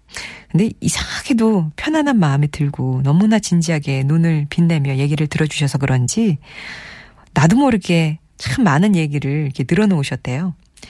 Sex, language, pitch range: female, Korean, 145-200 Hz